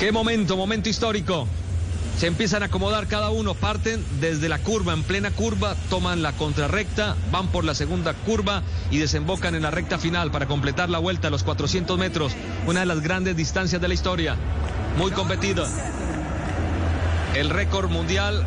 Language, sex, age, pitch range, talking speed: Spanish, male, 40-59, 80-100 Hz, 170 wpm